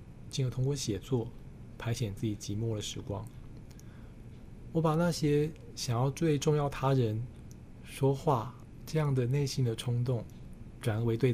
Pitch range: 115-135 Hz